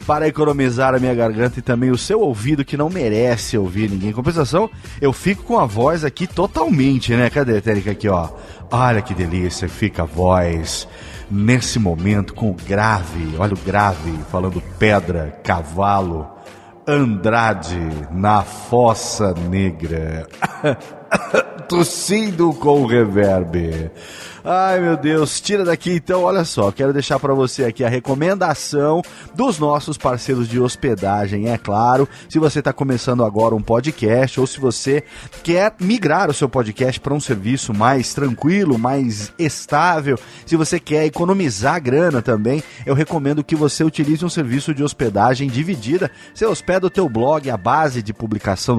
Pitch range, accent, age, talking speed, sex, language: 105-150 Hz, Brazilian, 30-49, 150 wpm, male, Portuguese